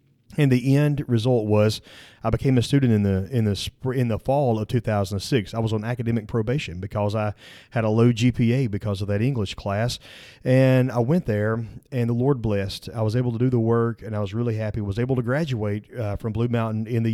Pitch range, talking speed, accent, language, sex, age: 105-125 Hz, 230 wpm, American, English, male, 30-49